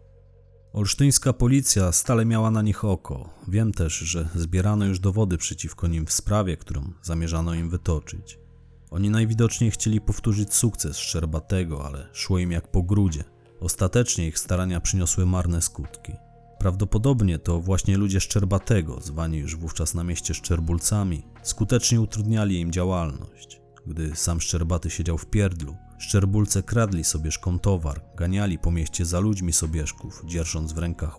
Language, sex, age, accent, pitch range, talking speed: Polish, male, 30-49, native, 85-100 Hz, 140 wpm